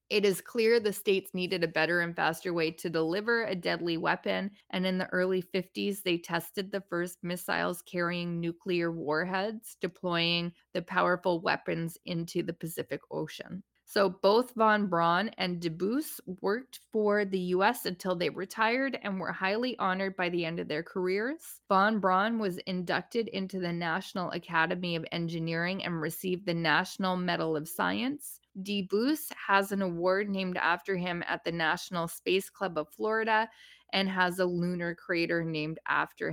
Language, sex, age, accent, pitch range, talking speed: English, female, 20-39, American, 175-210 Hz, 165 wpm